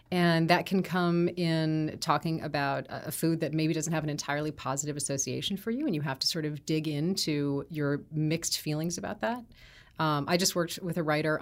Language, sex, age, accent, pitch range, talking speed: English, female, 30-49, American, 145-170 Hz, 205 wpm